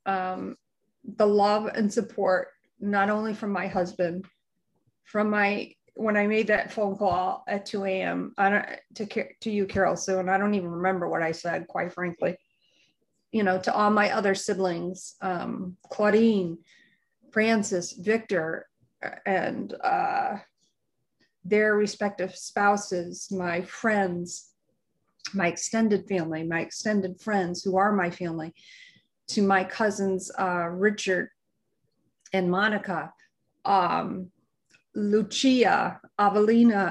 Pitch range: 185-215 Hz